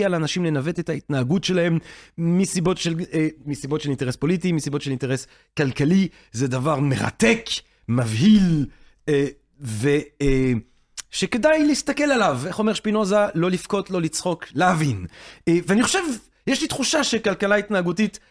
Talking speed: 130 wpm